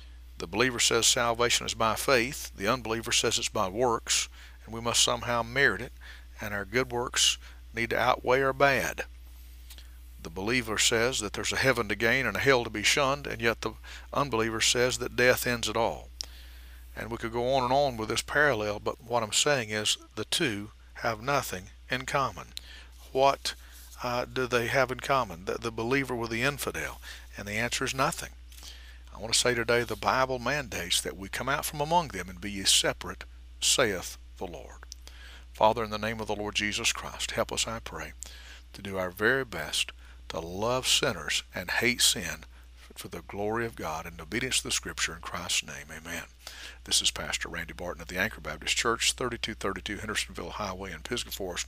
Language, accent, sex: English, American, male